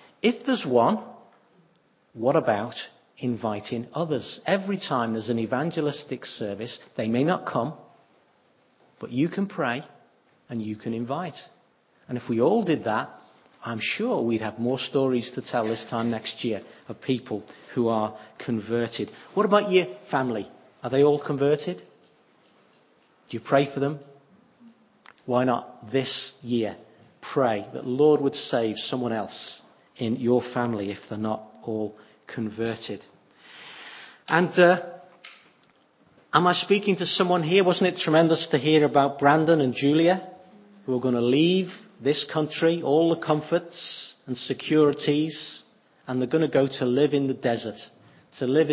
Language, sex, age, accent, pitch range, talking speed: English, male, 40-59, British, 120-165 Hz, 150 wpm